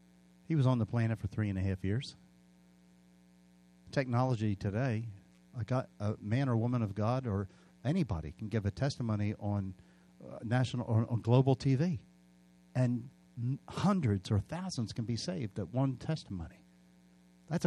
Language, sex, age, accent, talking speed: English, male, 50-69, American, 145 wpm